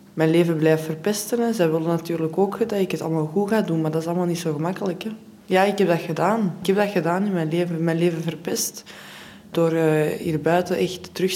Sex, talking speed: female, 230 wpm